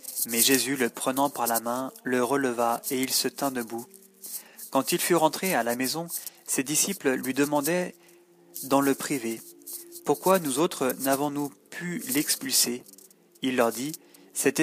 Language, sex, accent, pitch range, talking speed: French, male, French, 125-175 Hz, 155 wpm